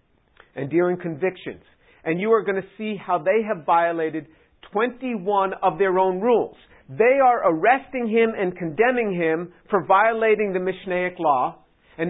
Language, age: English, 50-69